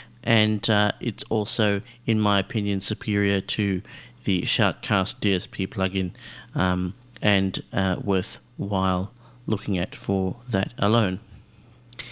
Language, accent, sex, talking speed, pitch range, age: English, Australian, male, 110 wpm, 105-125 Hz, 40-59